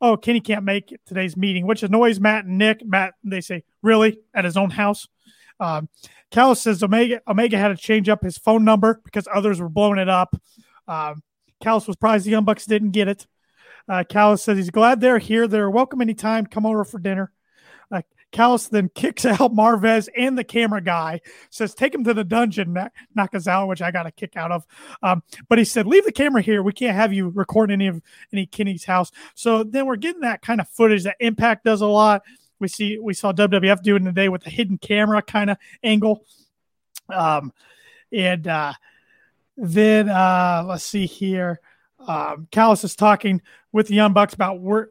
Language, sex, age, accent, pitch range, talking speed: English, male, 30-49, American, 195-225 Hz, 200 wpm